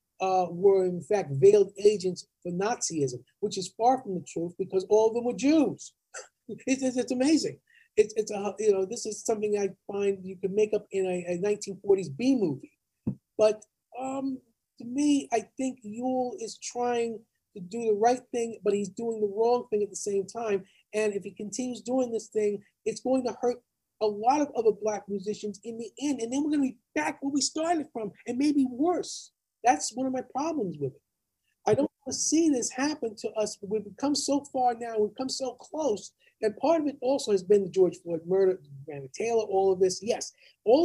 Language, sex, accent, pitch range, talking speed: English, male, American, 200-265 Hz, 210 wpm